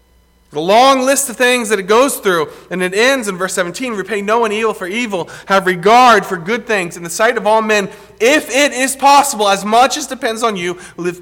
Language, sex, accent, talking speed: English, male, American, 230 wpm